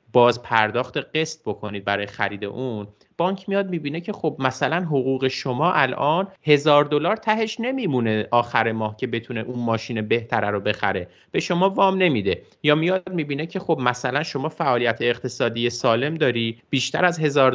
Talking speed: 160 wpm